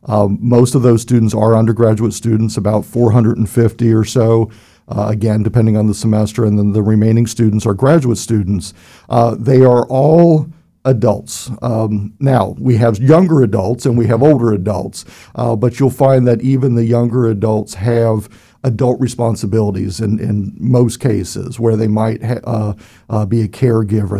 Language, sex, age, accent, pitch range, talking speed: English, male, 50-69, American, 105-120 Hz, 165 wpm